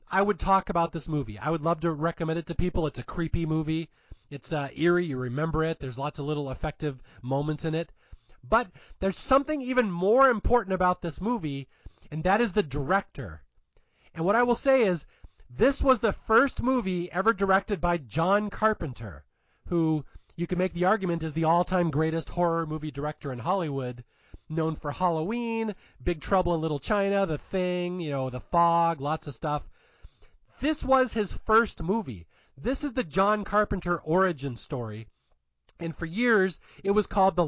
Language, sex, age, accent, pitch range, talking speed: English, male, 40-59, American, 155-205 Hz, 180 wpm